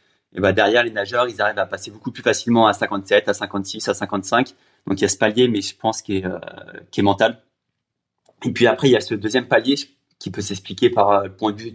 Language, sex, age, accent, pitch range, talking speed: French, male, 20-39, French, 100-120 Hz, 250 wpm